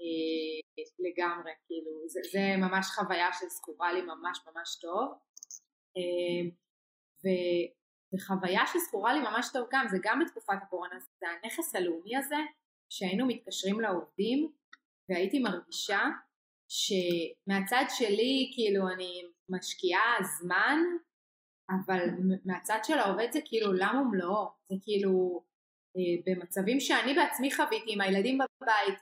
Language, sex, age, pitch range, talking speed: Hebrew, female, 20-39, 185-245 Hz, 110 wpm